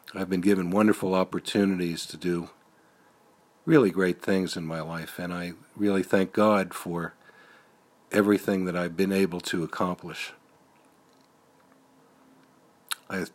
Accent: American